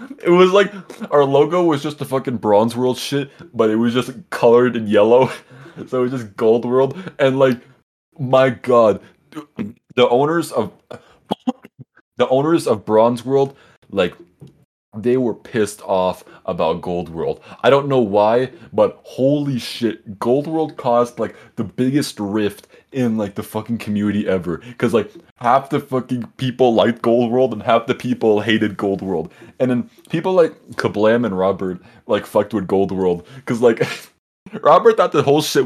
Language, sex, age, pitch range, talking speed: English, male, 20-39, 105-135 Hz, 170 wpm